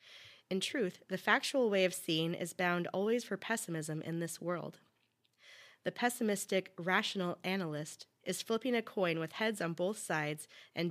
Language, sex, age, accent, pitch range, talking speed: English, female, 30-49, American, 165-205 Hz, 160 wpm